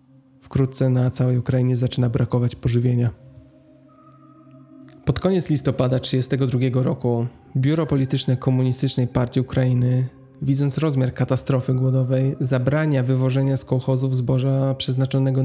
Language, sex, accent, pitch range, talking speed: Polish, male, native, 125-135 Hz, 105 wpm